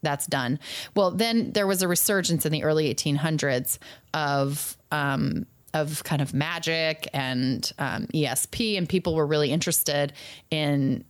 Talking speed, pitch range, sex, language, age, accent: 145 wpm, 145-175 Hz, female, English, 30-49, American